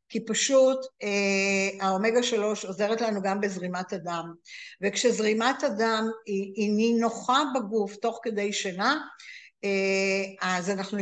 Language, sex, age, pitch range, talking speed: Hebrew, female, 60-79, 200-260 Hz, 110 wpm